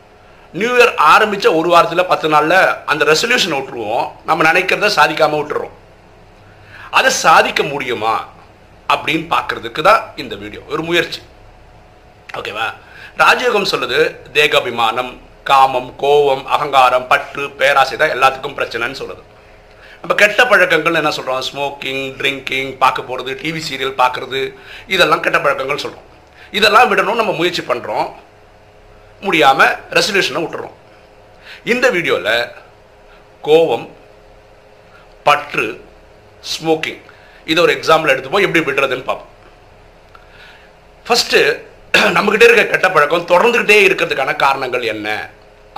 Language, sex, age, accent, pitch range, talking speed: Tamil, male, 50-69, native, 105-160 Hz, 95 wpm